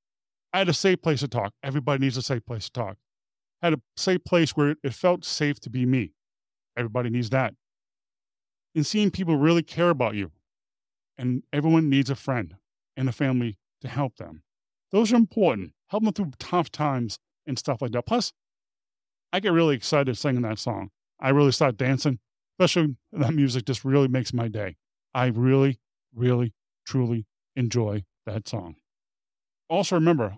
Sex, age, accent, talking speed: male, 30-49, American, 175 wpm